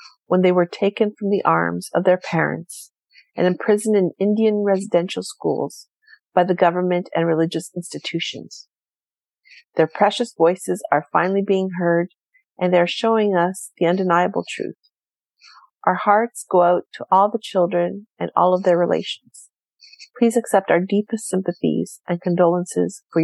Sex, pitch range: female, 175-210 Hz